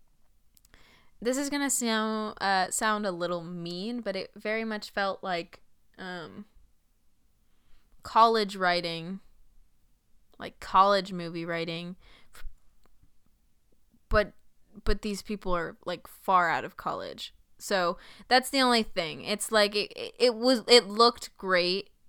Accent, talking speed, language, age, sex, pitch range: American, 130 wpm, English, 20-39, female, 180-220 Hz